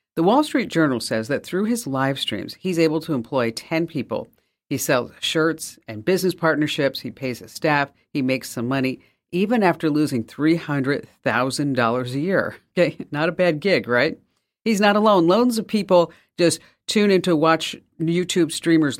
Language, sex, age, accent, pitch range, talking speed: English, female, 50-69, American, 130-175 Hz, 175 wpm